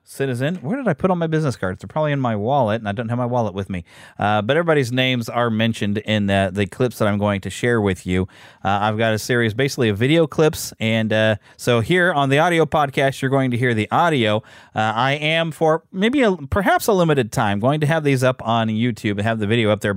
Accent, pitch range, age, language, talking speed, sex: American, 105-135 Hz, 30-49, English, 250 wpm, male